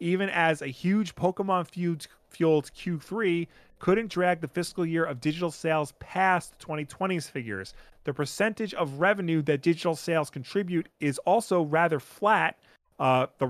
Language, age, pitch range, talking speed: English, 30-49, 145-175 Hz, 140 wpm